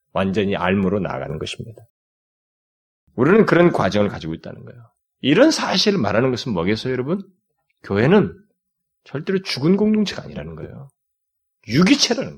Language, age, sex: Korean, 30-49, male